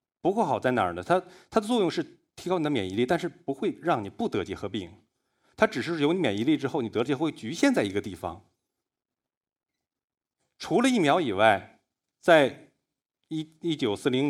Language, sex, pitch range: Chinese, male, 105-140 Hz